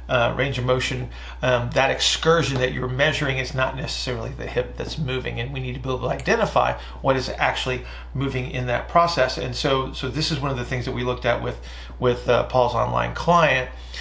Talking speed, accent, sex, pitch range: 220 wpm, American, male, 120-135 Hz